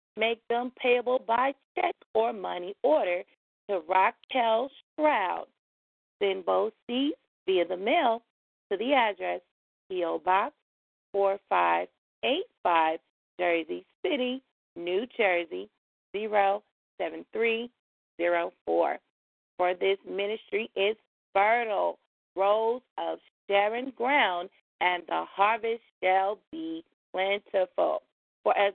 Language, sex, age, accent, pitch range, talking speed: English, female, 40-59, American, 175-245 Hz, 95 wpm